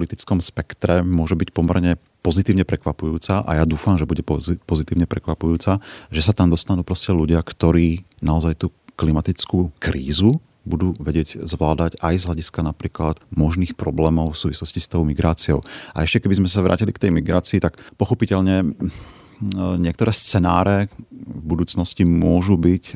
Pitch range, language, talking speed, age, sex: 80-90 Hz, Slovak, 145 wpm, 40-59, male